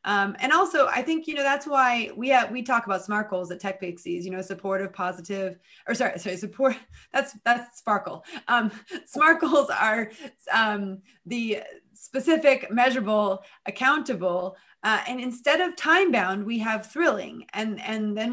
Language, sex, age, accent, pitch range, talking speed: English, female, 30-49, American, 195-250 Hz, 165 wpm